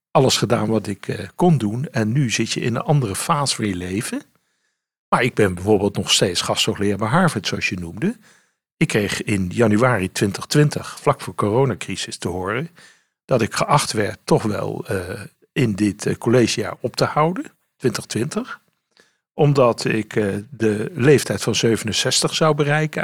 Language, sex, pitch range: Dutch, male, 105-155 Hz